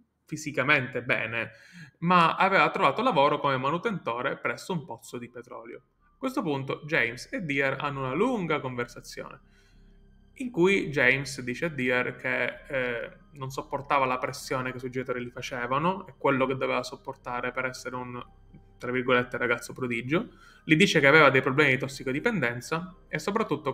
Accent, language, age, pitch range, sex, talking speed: native, Italian, 20-39, 125-155 Hz, male, 160 wpm